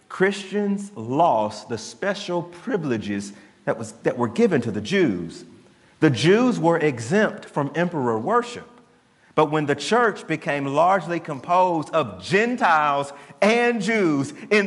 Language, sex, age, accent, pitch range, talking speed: English, male, 30-49, American, 140-185 Hz, 130 wpm